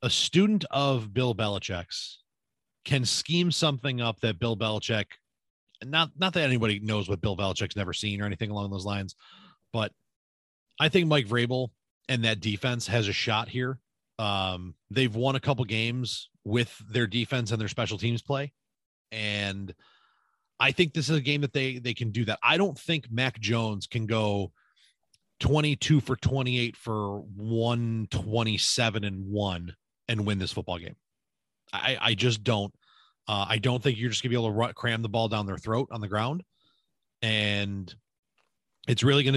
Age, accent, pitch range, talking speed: 30-49, American, 105-135 Hz, 170 wpm